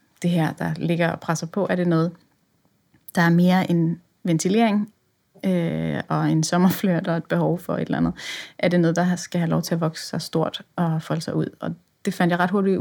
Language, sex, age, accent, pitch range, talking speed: Danish, female, 30-49, native, 160-180 Hz, 220 wpm